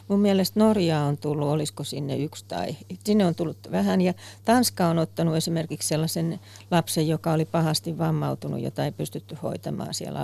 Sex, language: female, Finnish